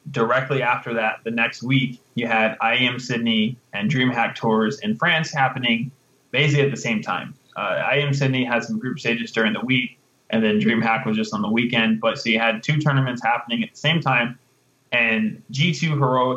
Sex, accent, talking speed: male, American, 195 wpm